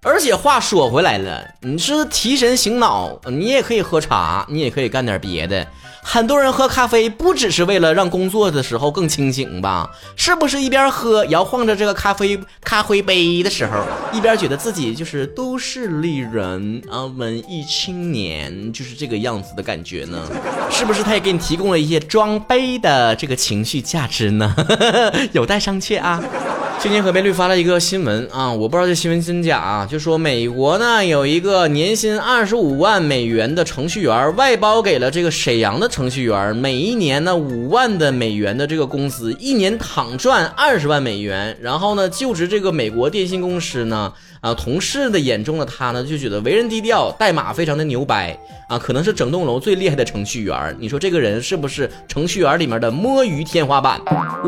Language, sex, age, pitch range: Chinese, male, 20-39, 135-220 Hz